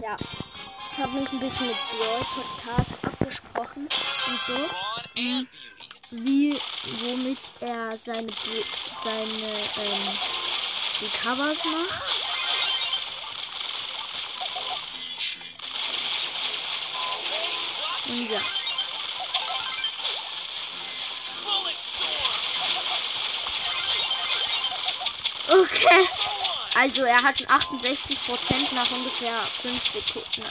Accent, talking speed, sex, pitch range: German, 65 wpm, female, 240-310 Hz